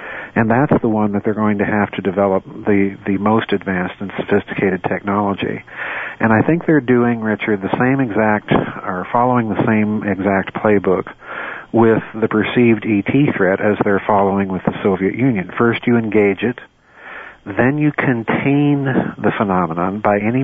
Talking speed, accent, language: 165 wpm, American, English